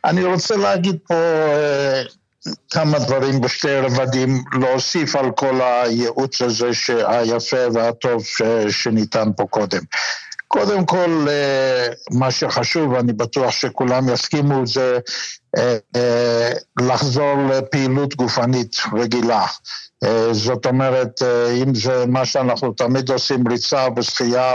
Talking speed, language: 115 wpm, Hebrew